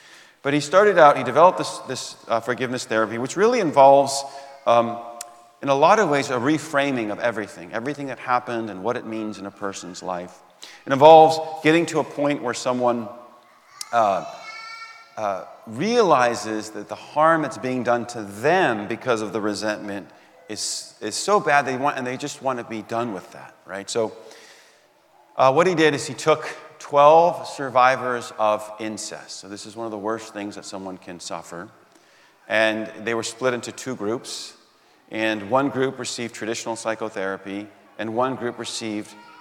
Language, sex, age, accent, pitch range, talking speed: English, male, 40-59, American, 110-140 Hz, 175 wpm